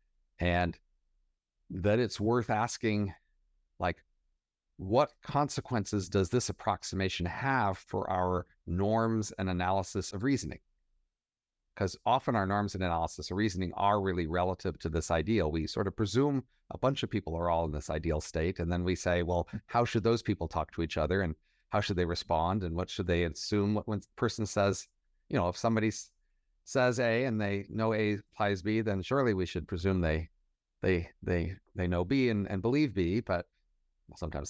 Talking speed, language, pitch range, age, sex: 180 wpm, English, 85-105 Hz, 50-69, male